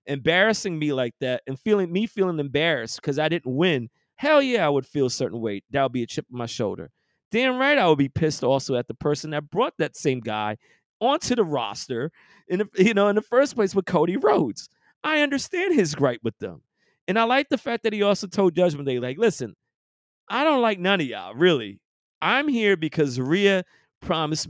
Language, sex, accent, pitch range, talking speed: English, male, American, 130-185 Hz, 215 wpm